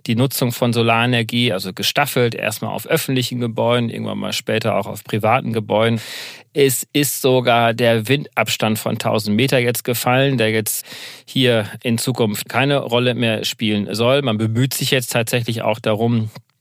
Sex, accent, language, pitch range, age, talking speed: male, German, German, 115-135 Hz, 40-59, 160 wpm